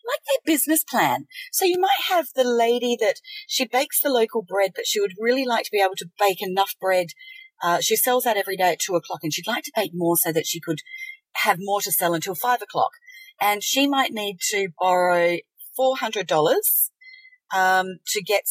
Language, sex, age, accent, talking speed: English, female, 40-59, Australian, 205 wpm